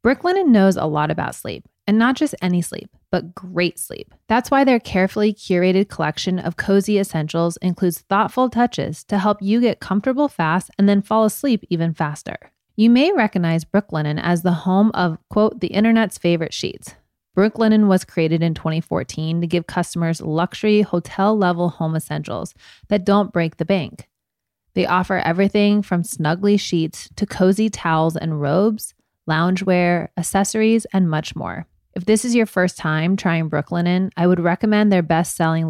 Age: 30-49